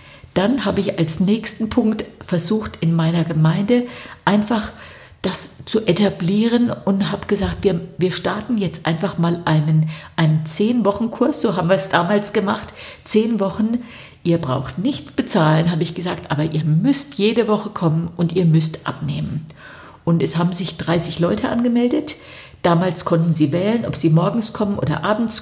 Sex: female